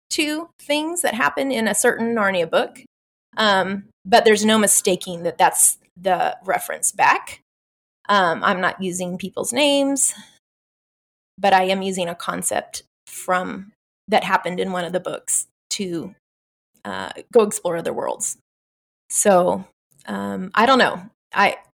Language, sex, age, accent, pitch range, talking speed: English, female, 20-39, American, 185-225 Hz, 140 wpm